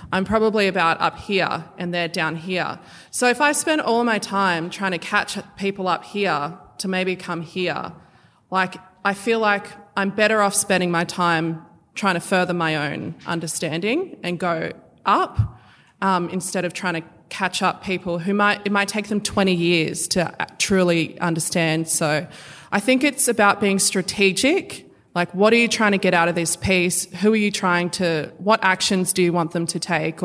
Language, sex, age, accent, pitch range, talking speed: English, female, 20-39, Australian, 170-200 Hz, 190 wpm